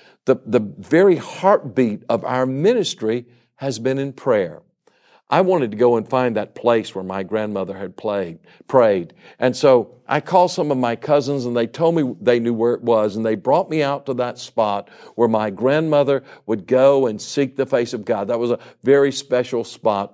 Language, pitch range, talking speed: English, 110-135 Hz, 200 wpm